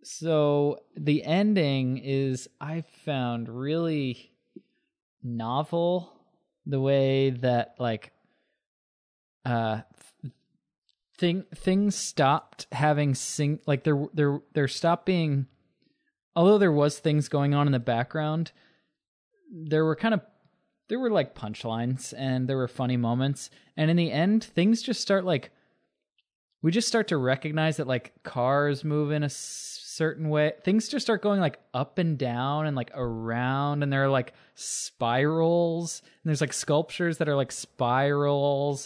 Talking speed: 140 wpm